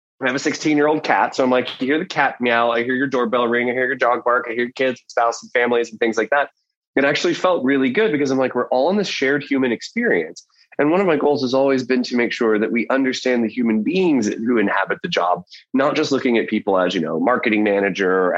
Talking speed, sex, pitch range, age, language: 270 wpm, male, 110-140 Hz, 20-39, English